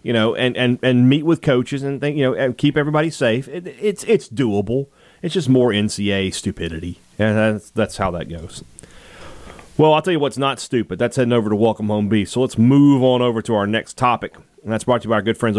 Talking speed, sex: 245 wpm, male